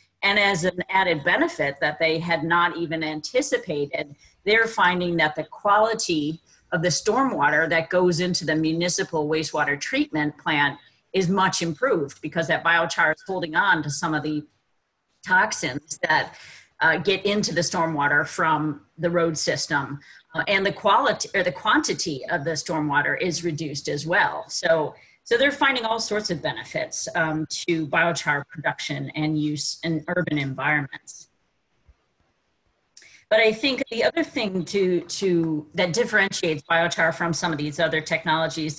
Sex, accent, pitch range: female, American, 155-195 Hz